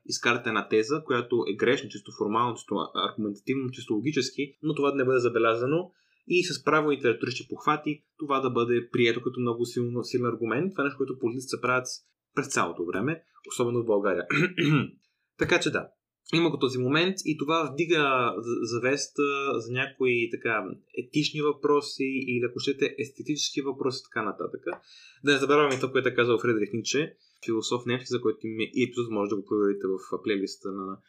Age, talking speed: 20-39, 180 wpm